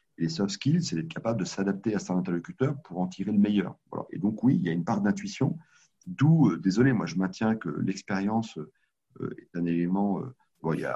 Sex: male